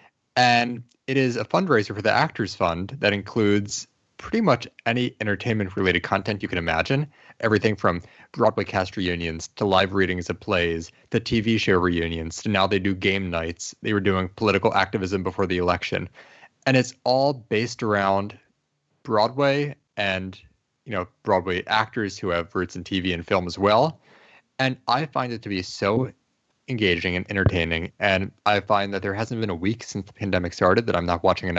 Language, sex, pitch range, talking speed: English, male, 90-115 Hz, 180 wpm